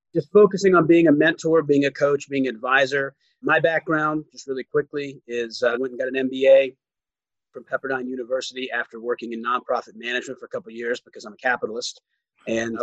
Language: English